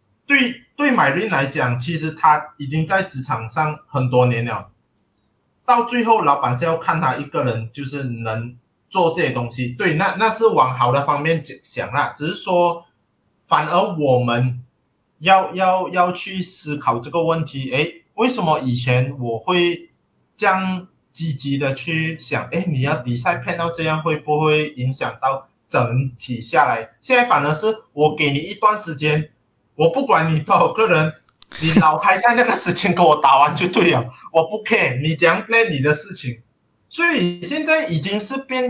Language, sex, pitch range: Chinese, male, 135-185 Hz